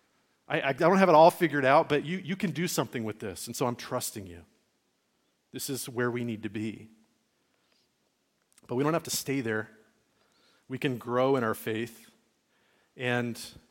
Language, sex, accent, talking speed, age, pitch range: English, male, American, 185 wpm, 40-59, 115-145 Hz